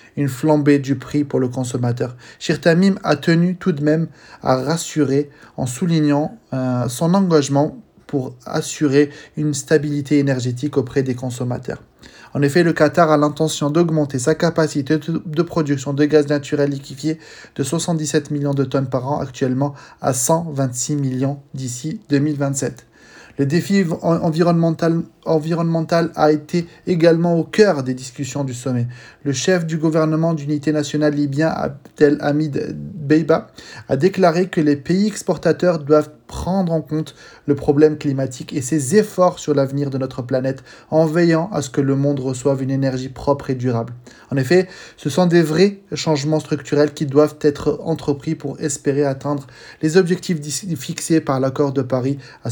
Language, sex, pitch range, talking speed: French, male, 140-165 Hz, 155 wpm